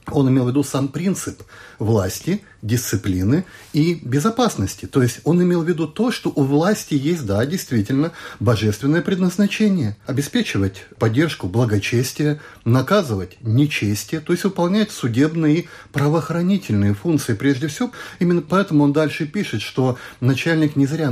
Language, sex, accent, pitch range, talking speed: Russian, male, native, 105-150 Hz, 135 wpm